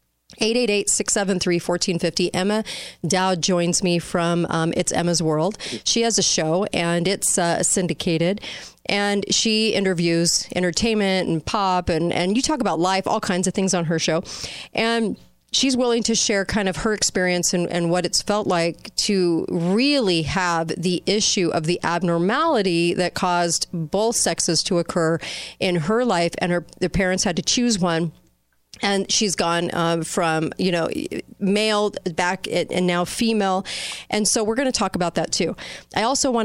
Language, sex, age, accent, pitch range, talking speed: English, female, 40-59, American, 170-200 Hz, 165 wpm